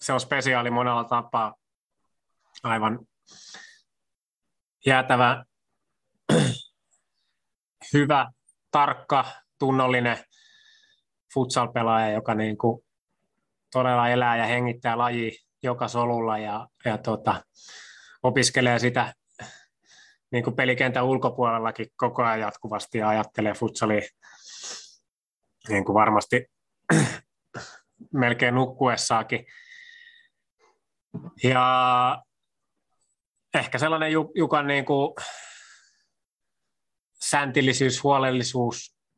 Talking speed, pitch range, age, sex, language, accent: 75 wpm, 115-130 Hz, 20-39, male, Finnish, native